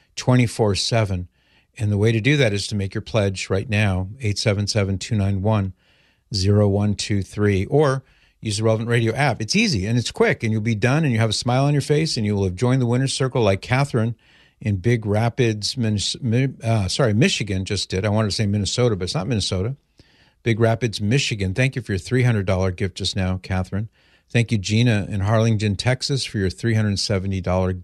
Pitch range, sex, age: 100-125 Hz, male, 50-69